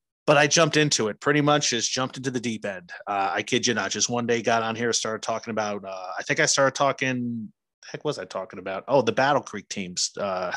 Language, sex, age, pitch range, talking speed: English, male, 30-49, 105-140 Hz, 250 wpm